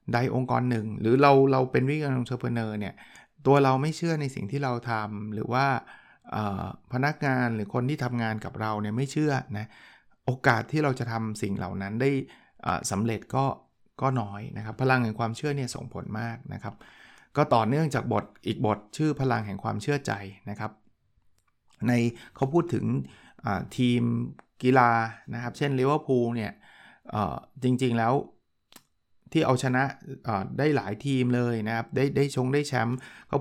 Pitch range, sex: 110-135 Hz, male